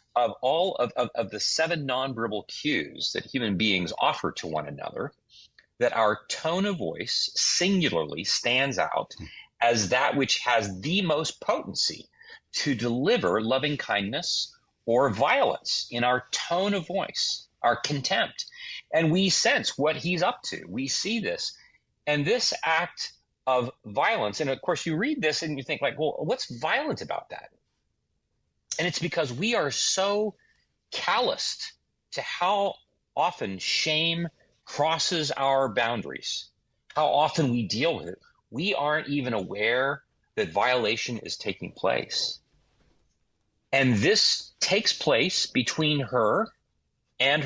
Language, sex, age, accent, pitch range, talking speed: English, male, 30-49, American, 125-170 Hz, 140 wpm